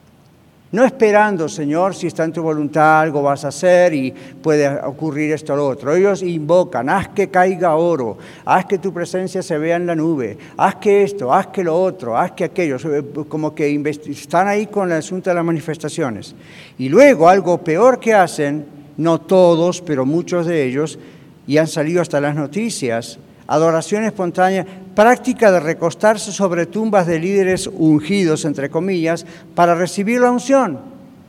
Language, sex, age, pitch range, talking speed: Spanish, male, 60-79, 155-200 Hz, 170 wpm